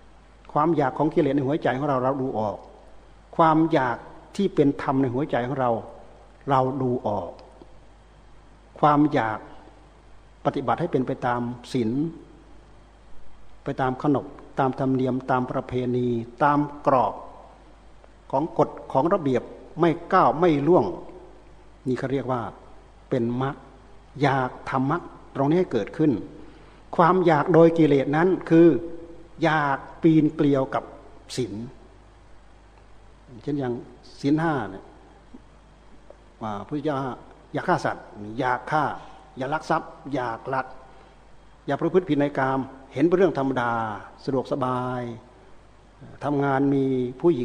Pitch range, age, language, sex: 120-150 Hz, 60-79, Thai, male